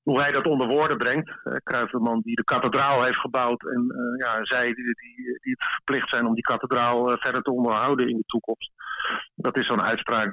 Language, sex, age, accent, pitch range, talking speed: Dutch, male, 50-69, Dutch, 115-130 Hz, 215 wpm